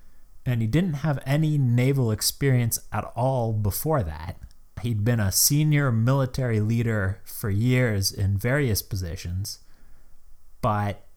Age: 30-49